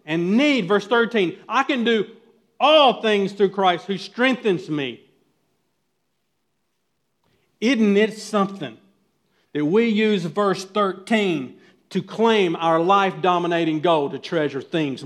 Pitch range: 190-285 Hz